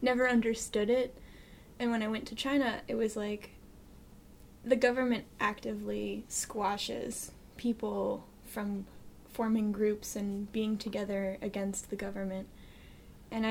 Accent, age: American, 10-29